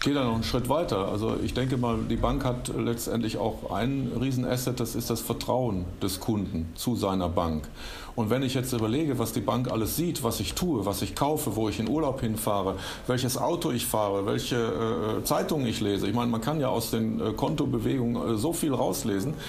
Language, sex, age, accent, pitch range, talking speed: German, male, 40-59, German, 110-135 Hz, 205 wpm